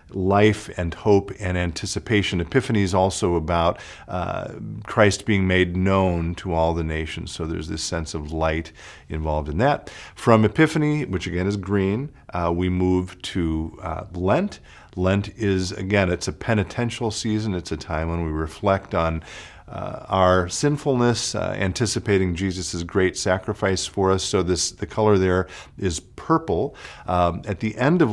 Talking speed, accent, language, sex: 160 wpm, American, English, male